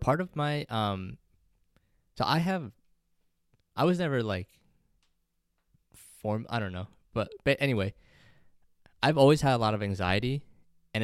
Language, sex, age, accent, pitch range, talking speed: English, male, 20-39, American, 95-120 Hz, 140 wpm